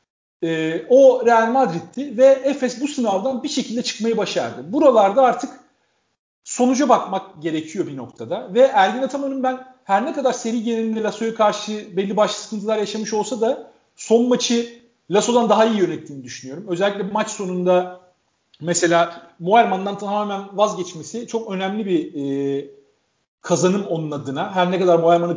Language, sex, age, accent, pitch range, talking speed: Turkish, male, 40-59, native, 175-240 Hz, 145 wpm